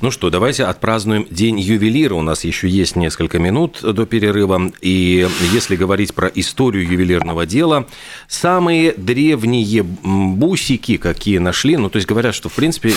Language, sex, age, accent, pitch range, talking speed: Russian, male, 40-59, native, 95-125 Hz, 155 wpm